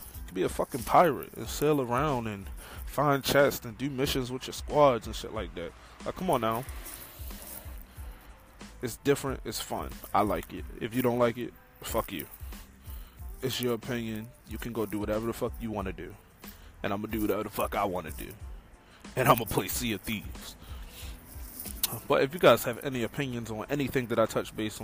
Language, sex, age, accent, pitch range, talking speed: English, male, 20-39, American, 90-140 Hz, 205 wpm